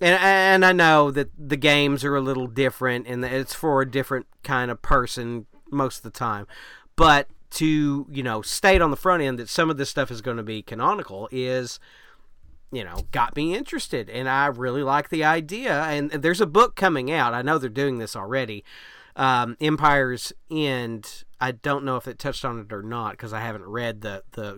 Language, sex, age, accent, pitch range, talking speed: English, male, 40-59, American, 120-145 Hz, 210 wpm